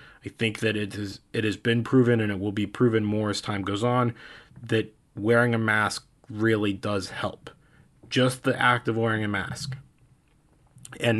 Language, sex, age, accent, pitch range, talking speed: English, male, 20-39, American, 105-125 Hz, 180 wpm